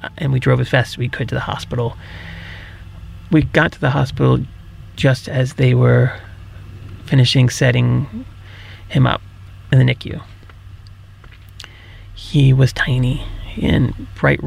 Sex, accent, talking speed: male, American, 135 wpm